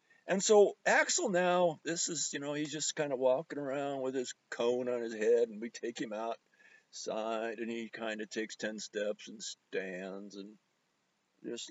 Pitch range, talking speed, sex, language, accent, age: 110-175 Hz, 185 wpm, male, English, American, 50-69